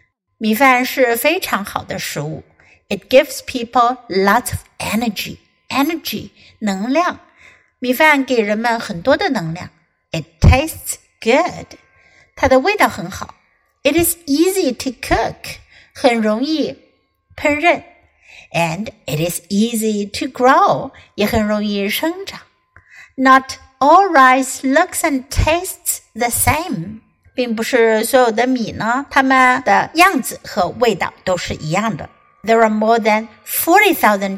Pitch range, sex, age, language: 215-280 Hz, female, 60-79, Chinese